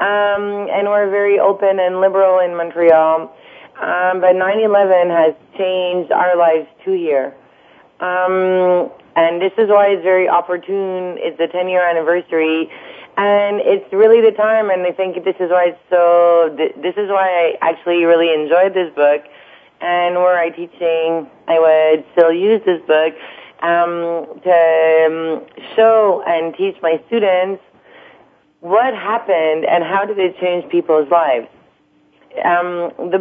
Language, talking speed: English, 145 wpm